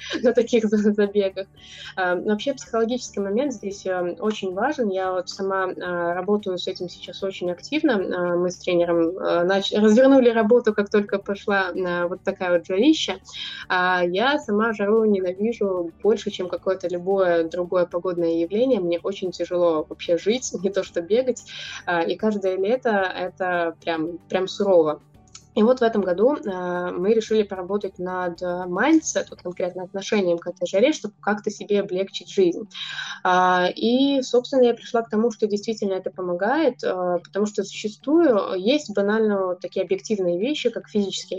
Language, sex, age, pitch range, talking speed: Russian, female, 20-39, 180-220 Hz, 145 wpm